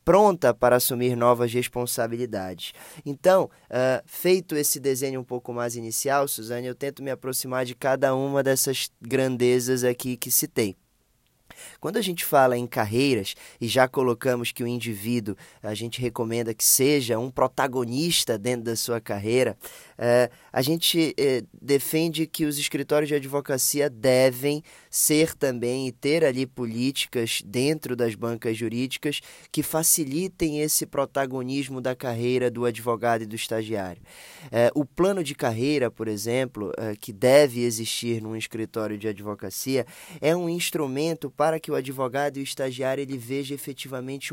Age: 20-39